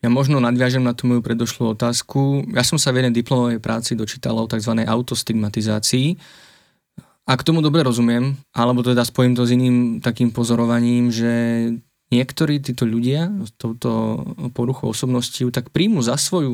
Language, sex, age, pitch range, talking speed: Slovak, male, 20-39, 115-125 Hz, 160 wpm